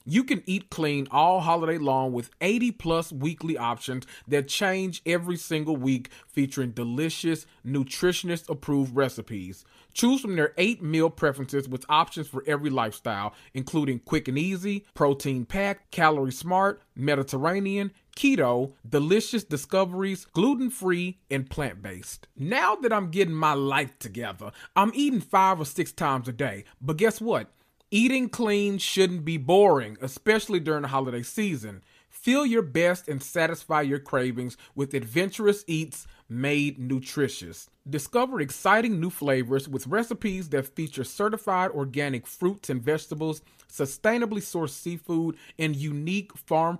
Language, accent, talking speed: English, American, 140 wpm